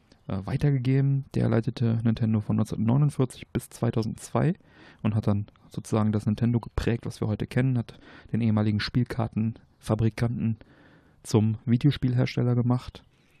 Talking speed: 115 wpm